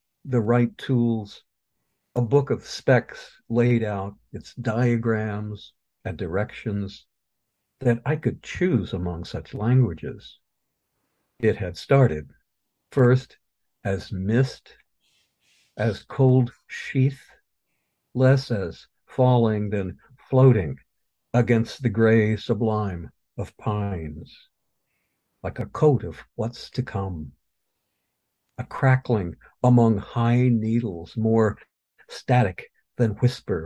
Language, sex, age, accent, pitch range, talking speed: English, male, 60-79, American, 100-125 Hz, 100 wpm